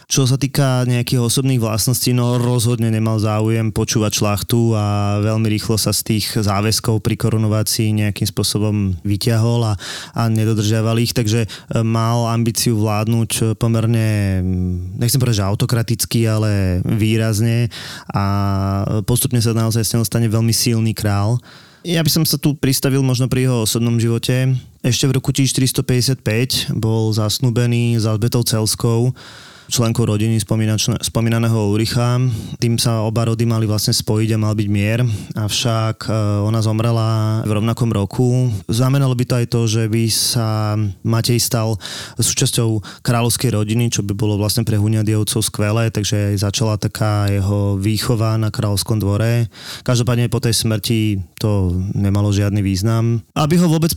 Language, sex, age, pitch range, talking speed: Slovak, male, 20-39, 110-125 Hz, 140 wpm